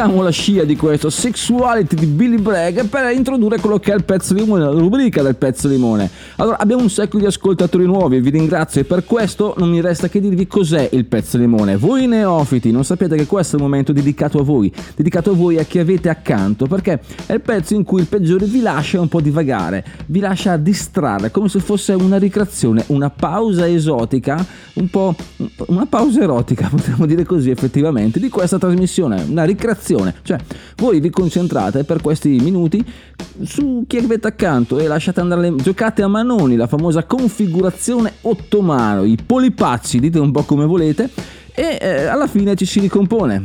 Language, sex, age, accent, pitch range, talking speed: Italian, male, 30-49, native, 140-200 Hz, 190 wpm